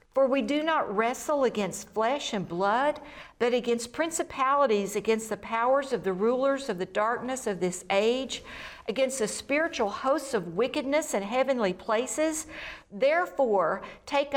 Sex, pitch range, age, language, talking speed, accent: female, 215-270 Hz, 50-69, English, 145 wpm, American